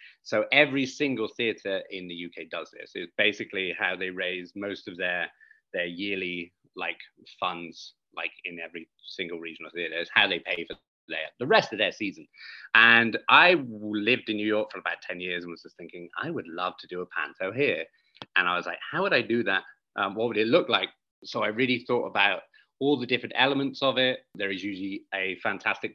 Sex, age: male, 30-49